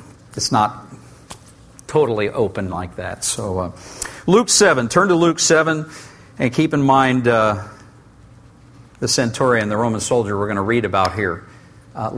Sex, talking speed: male, 155 wpm